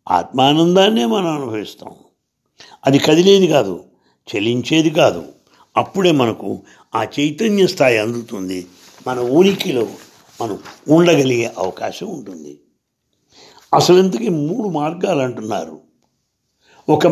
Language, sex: English, male